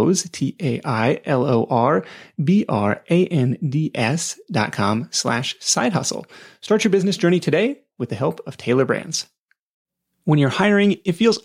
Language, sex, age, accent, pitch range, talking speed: English, male, 30-49, American, 135-185 Hz, 115 wpm